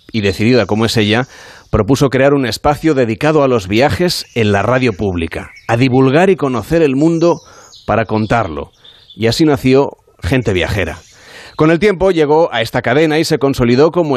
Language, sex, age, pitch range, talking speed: Spanish, male, 30-49, 110-155 Hz, 175 wpm